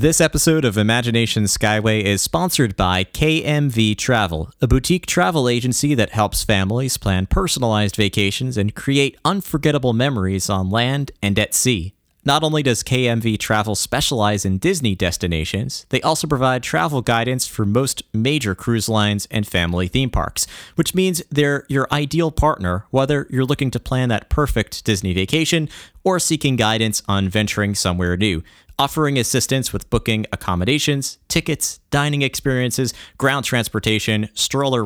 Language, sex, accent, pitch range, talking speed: English, male, American, 100-135 Hz, 145 wpm